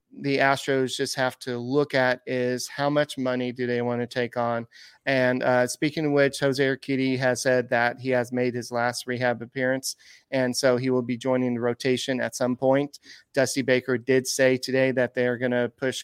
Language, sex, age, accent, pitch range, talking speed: English, male, 30-49, American, 125-135 Hz, 210 wpm